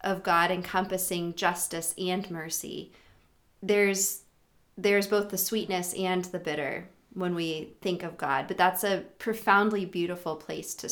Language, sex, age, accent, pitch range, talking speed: English, female, 30-49, American, 180-210 Hz, 145 wpm